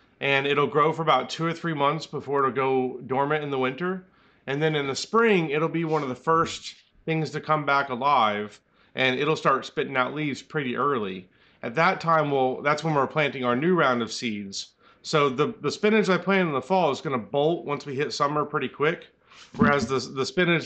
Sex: male